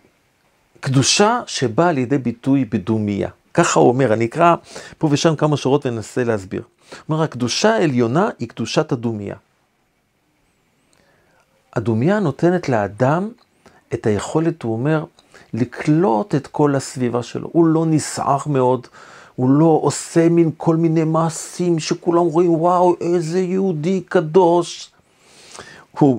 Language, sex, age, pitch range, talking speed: Hebrew, male, 50-69, 125-170 Hz, 120 wpm